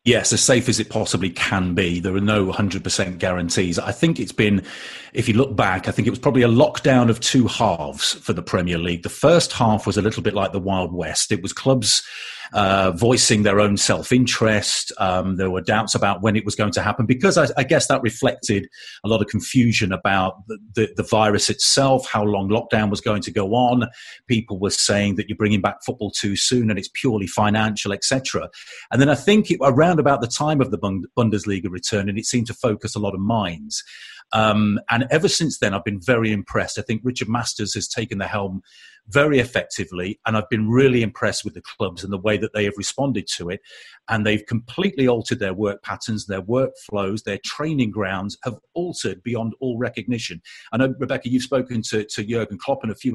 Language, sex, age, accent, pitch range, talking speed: English, male, 40-59, British, 100-125 Hz, 215 wpm